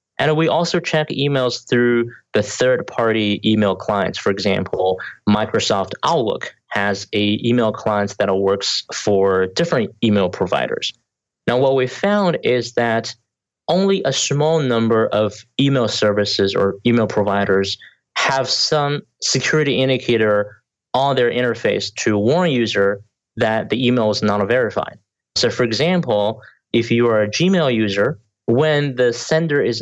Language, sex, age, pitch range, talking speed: English, male, 20-39, 105-130 Hz, 140 wpm